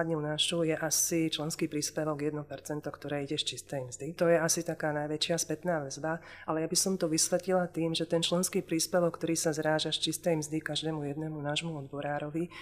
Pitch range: 150-180 Hz